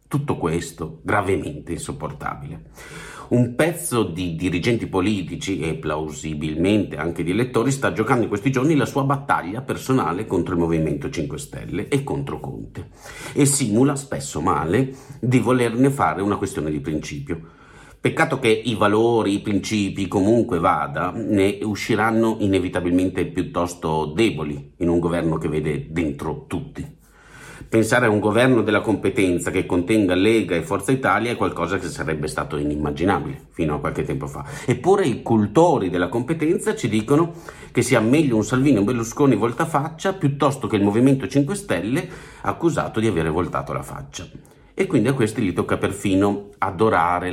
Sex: male